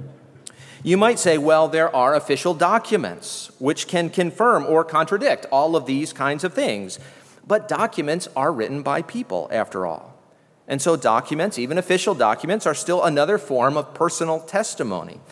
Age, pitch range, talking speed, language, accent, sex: 40-59, 130-175 Hz, 155 wpm, English, American, male